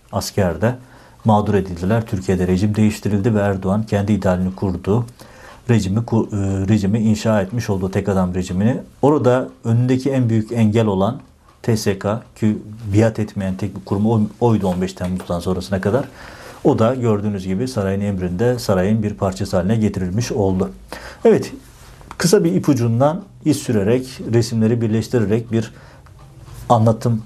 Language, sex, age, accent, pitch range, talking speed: Turkish, male, 60-79, native, 100-115 Hz, 130 wpm